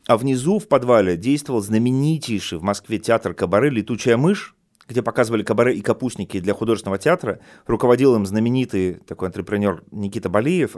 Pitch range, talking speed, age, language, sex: 100-140 Hz, 150 wpm, 30-49, Russian, male